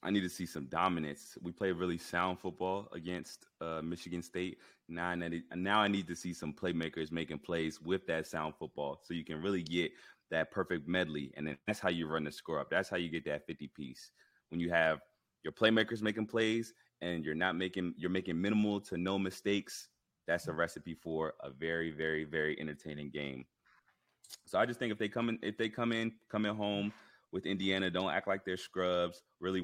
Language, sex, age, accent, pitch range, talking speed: English, male, 30-49, American, 80-95 Hz, 210 wpm